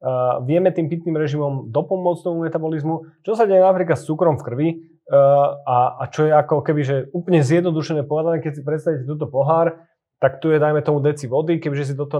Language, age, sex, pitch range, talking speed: Slovak, 30-49, male, 135-165 Hz, 195 wpm